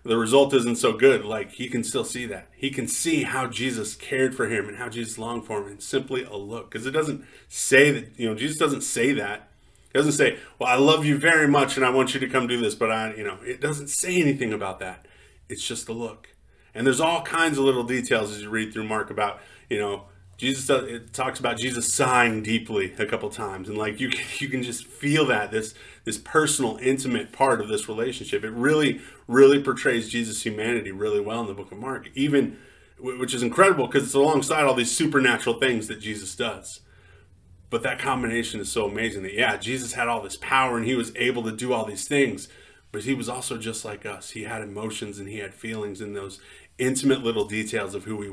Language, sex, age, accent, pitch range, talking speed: English, male, 30-49, American, 110-135 Hz, 230 wpm